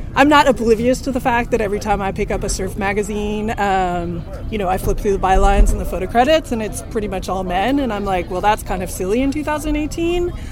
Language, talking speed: English, 245 wpm